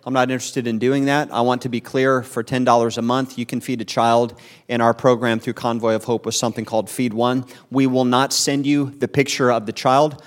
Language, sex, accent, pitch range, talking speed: English, male, American, 115-130 Hz, 245 wpm